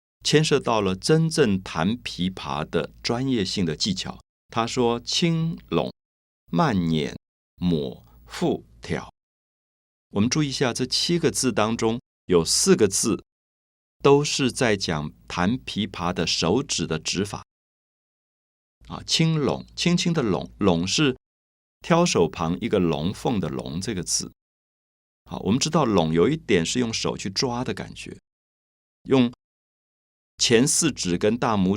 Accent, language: native, Chinese